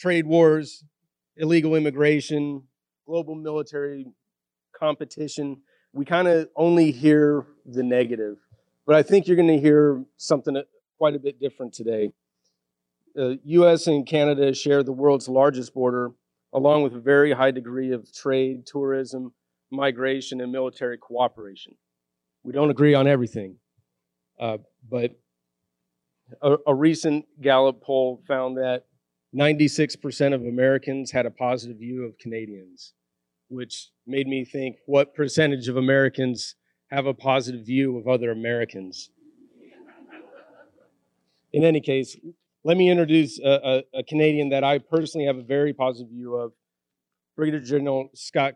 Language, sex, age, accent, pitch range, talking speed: English, male, 30-49, American, 120-150 Hz, 135 wpm